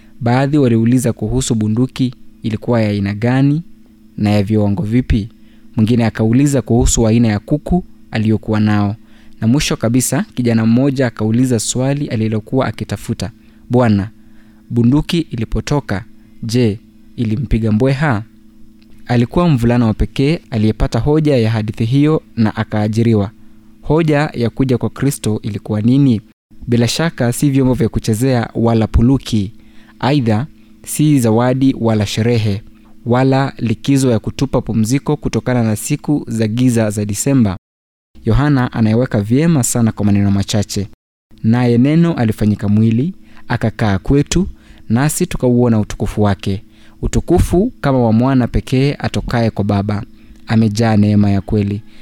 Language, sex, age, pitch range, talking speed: Swahili, male, 20-39, 110-130 Hz, 125 wpm